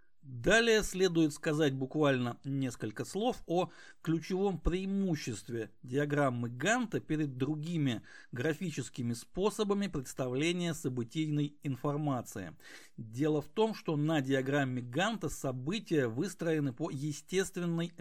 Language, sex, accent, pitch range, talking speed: Russian, male, native, 130-175 Hz, 95 wpm